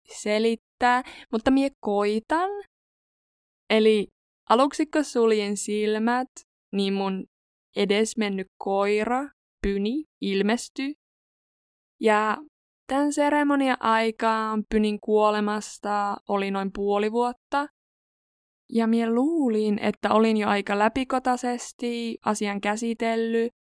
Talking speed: 85 wpm